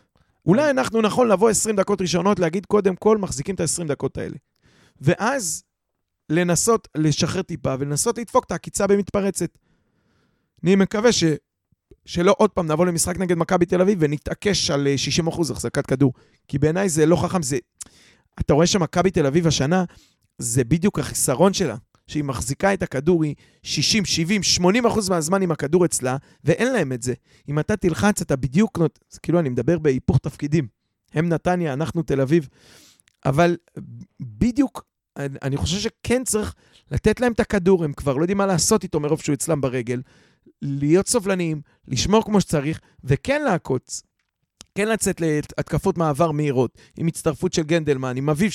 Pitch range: 140-195 Hz